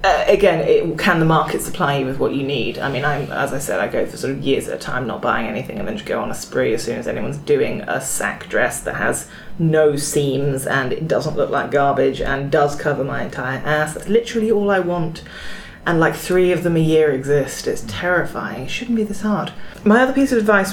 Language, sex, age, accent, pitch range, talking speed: English, female, 30-49, British, 145-180 Hz, 250 wpm